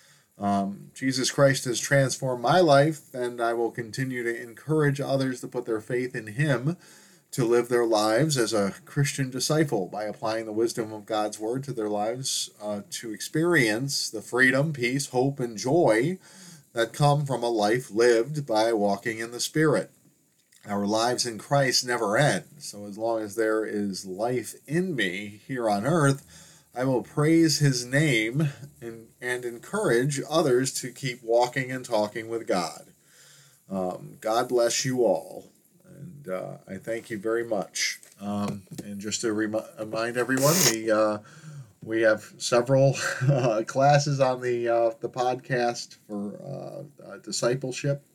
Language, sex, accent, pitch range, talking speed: English, male, American, 110-145 Hz, 155 wpm